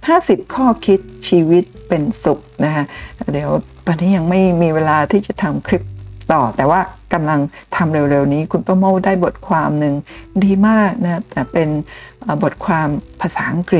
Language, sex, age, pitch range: Thai, female, 60-79, 155-205 Hz